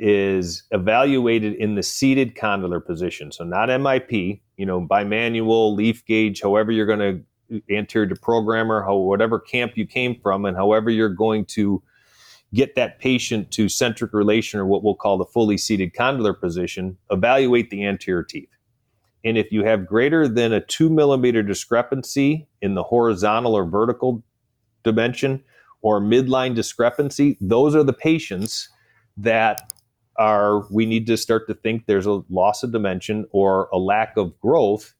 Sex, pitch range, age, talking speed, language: male, 100-120 Hz, 30-49, 160 wpm, English